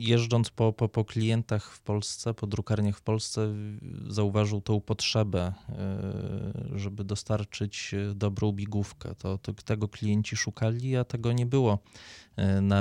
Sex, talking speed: male, 130 wpm